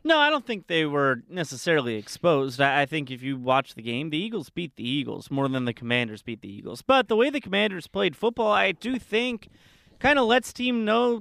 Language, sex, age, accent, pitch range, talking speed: English, male, 30-49, American, 140-205 Hz, 225 wpm